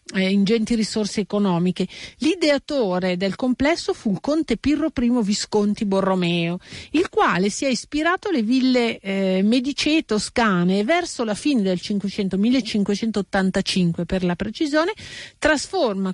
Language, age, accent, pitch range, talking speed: Italian, 50-69, native, 190-255 Hz, 125 wpm